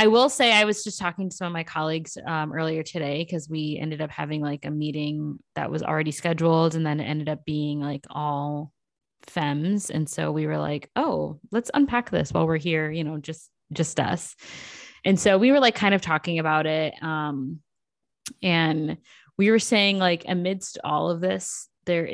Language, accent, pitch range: English, American, 150-180 Hz